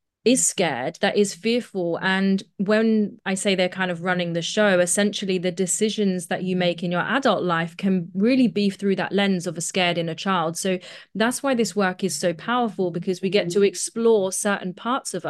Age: 20-39